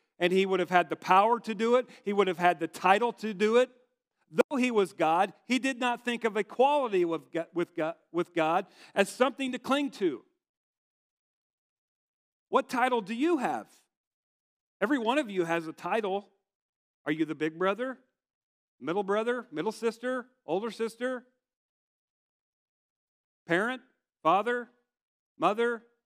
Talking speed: 145 wpm